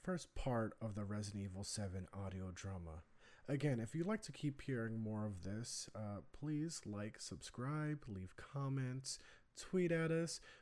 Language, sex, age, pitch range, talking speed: English, male, 30-49, 110-150 Hz, 160 wpm